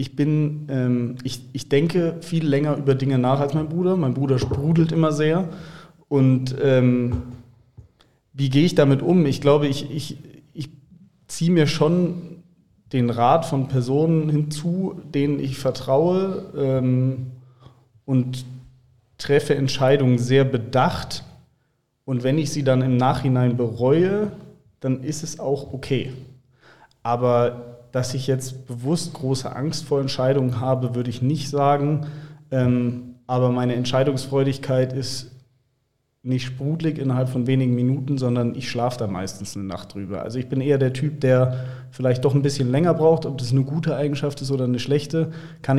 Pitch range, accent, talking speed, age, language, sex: 130-150 Hz, German, 155 wpm, 40-59, German, male